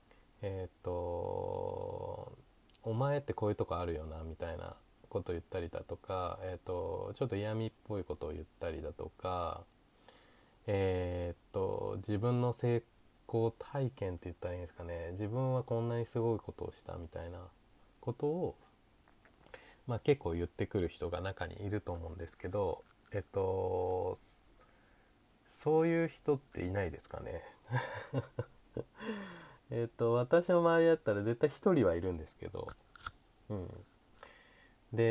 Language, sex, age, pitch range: Japanese, male, 20-39, 95-150 Hz